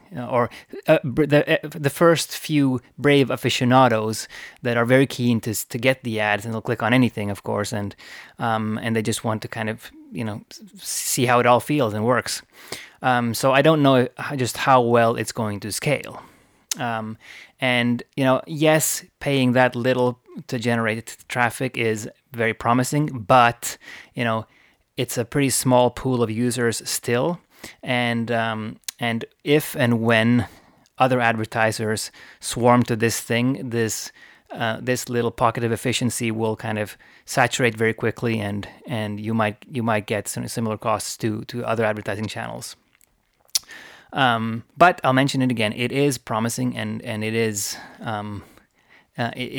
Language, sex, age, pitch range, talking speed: English, male, 20-39, 110-130 Hz, 165 wpm